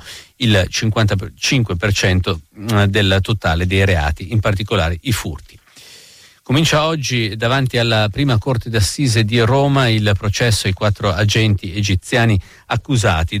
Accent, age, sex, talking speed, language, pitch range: native, 50-69, male, 115 wpm, Italian, 90-110 Hz